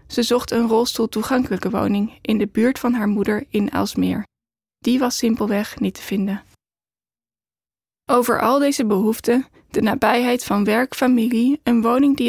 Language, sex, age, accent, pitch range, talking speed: Dutch, female, 10-29, Dutch, 220-245 Hz, 155 wpm